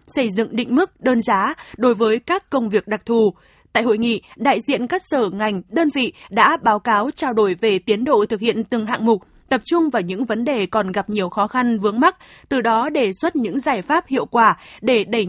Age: 20-39